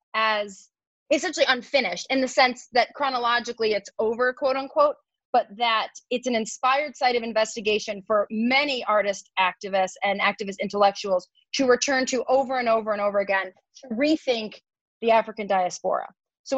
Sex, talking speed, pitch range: female, 150 wpm, 205-255 Hz